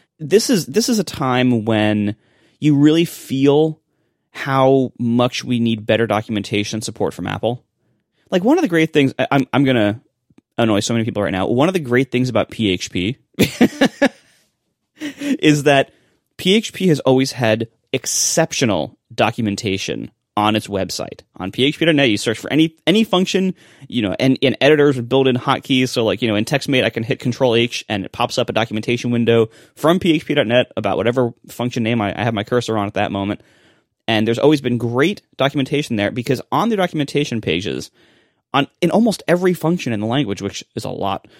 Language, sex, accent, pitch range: English, male, American, 110-150 Hz